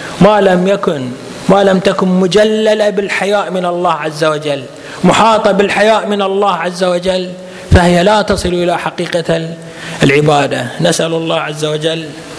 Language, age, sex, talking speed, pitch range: Arabic, 30-49, male, 135 wpm, 135-180 Hz